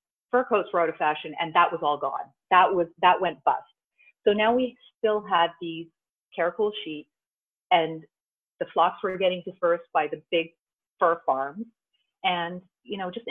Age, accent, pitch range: 40-59, American, 165-240 Hz